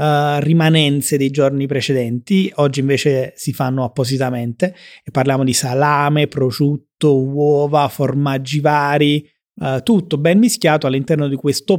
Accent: native